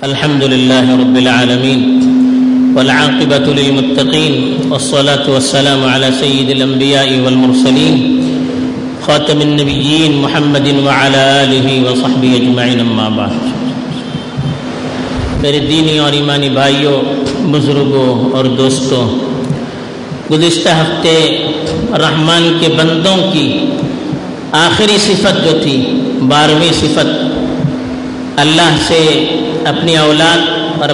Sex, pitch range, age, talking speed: male, 140-210 Hz, 50-69, 80 wpm